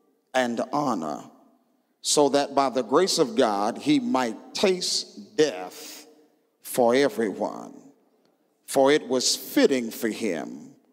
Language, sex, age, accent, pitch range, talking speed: English, male, 50-69, American, 130-170 Hz, 115 wpm